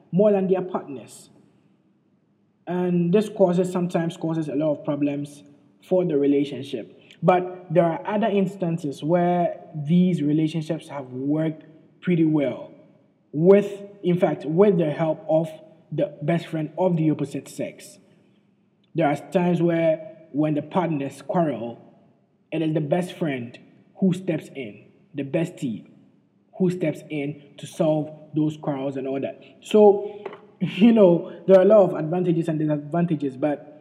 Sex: male